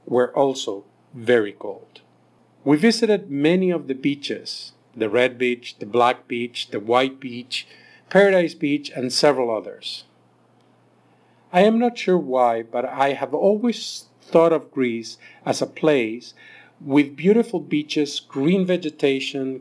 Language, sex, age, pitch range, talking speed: English, male, 50-69, 125-165 Hz, 135 wpm